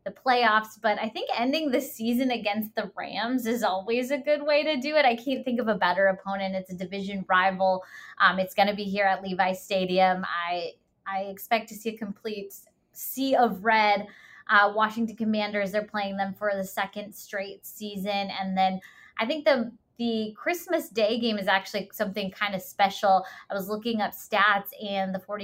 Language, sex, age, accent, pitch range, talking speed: English, female, 20-39, American, 190-220 Hz, 195 wpm